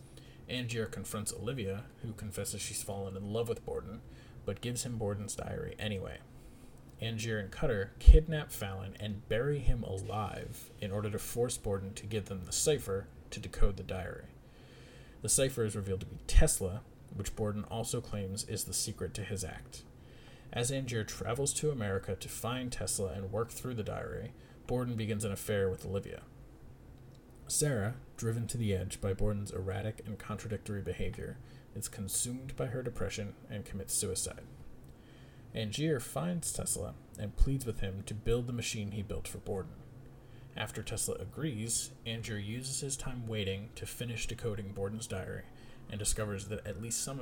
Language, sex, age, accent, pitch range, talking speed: English, male, 30-49, American, 100-120 Hz, 165 wpm